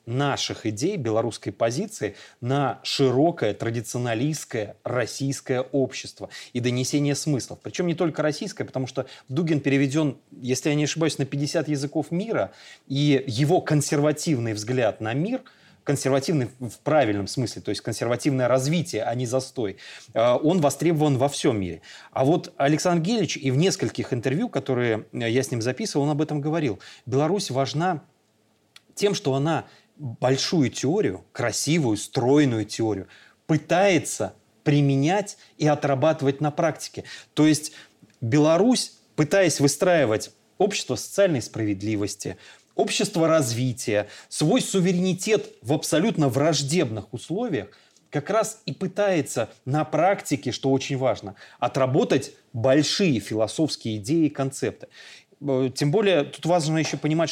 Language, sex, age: Russian, male, 30-49